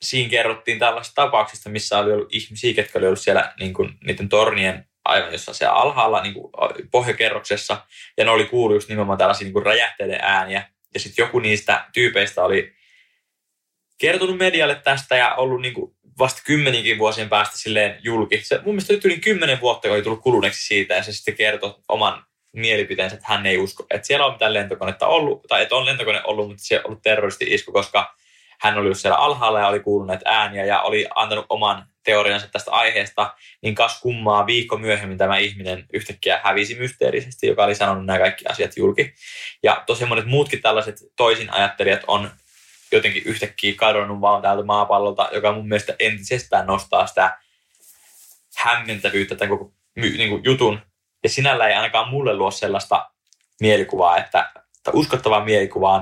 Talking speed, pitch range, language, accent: 165 wpm, 100-125 Hz, English, Finnish